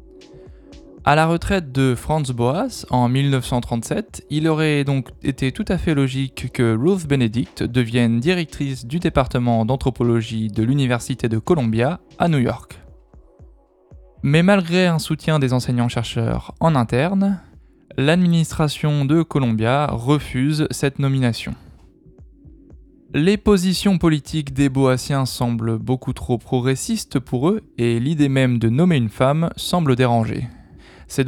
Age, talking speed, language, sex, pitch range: 20-39, 125 wpm, French, male, 120-160 Hz